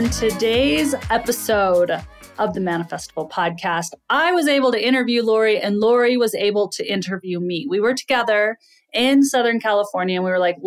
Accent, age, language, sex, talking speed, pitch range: American, 30-49, English, female, 170 wpm, 185-255 Hz